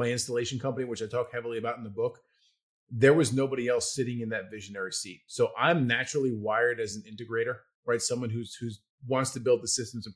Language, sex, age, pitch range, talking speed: English, male, 30-49, 115-155 Hz, 220 wpm